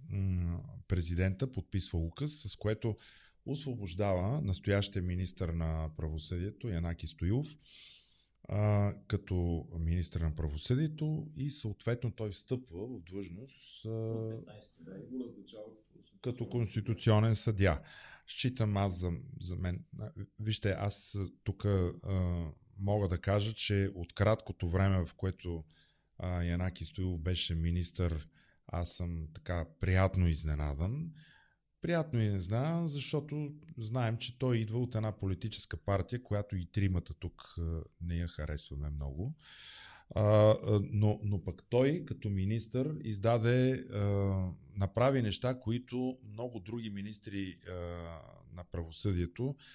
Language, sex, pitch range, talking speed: Bulgarian, male, 90-120 Hz, 110 wpm